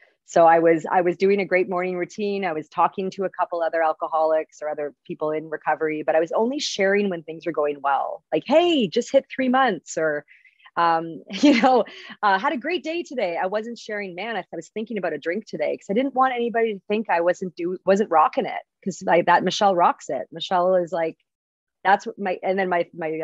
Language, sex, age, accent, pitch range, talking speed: English, female, 30-49, American, 160-195 Hz, 230 wpm